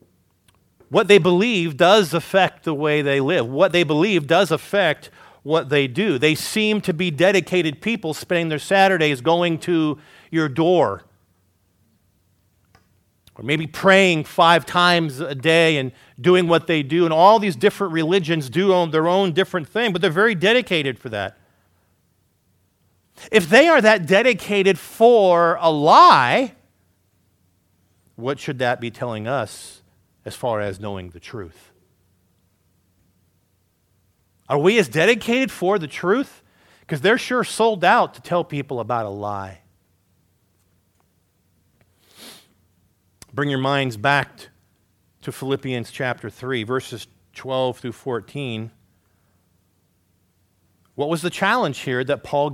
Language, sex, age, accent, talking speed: English, male, 40-59, American, 130 wpm